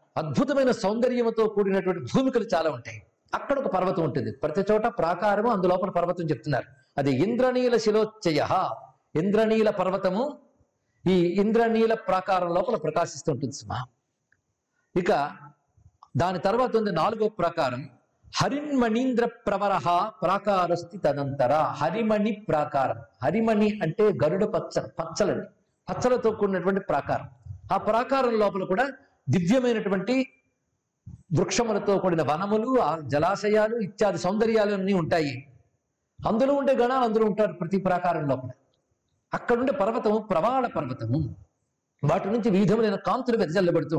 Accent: native